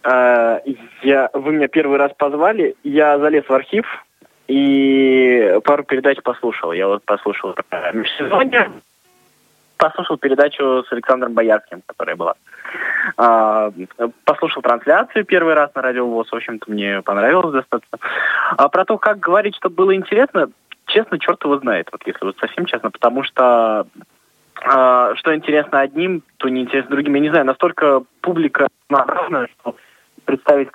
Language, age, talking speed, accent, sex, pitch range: Russian, 20-39, 135 wpm, native, male, 120-155 Hz